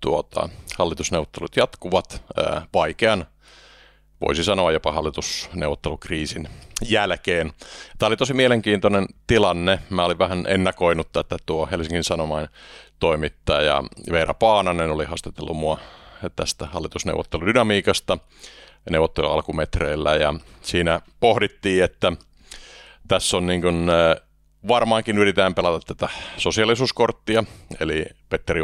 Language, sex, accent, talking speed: Finnish, male, native, 100 wpm